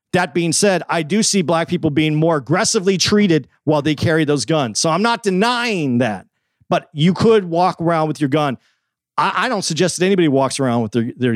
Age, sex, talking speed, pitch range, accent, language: 50-69, male, 215 wpm, 125-165 Hz, American, English